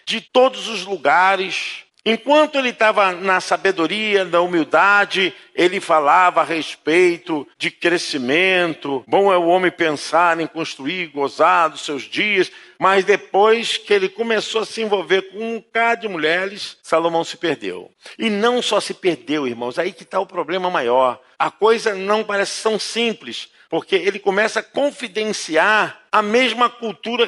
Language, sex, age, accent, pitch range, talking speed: Portuguese, male, 50-69, Brazilian, 155-215 Hz, 155 wpm